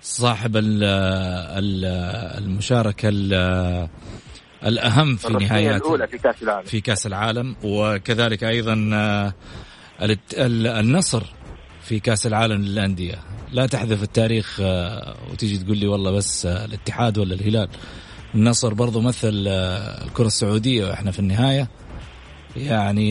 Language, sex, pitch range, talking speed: Arabic, male, 100-120 Hz, 90 wpm